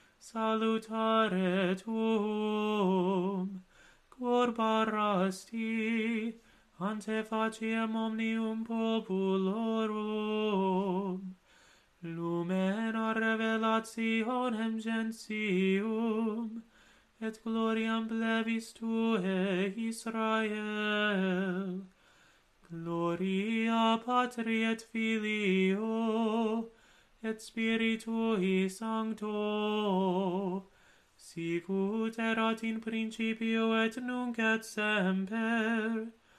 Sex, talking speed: male, 55 wpm